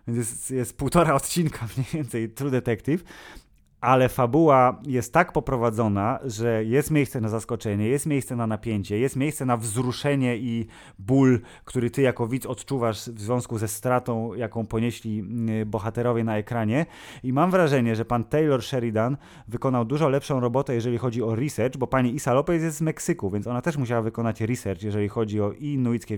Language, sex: Polish, male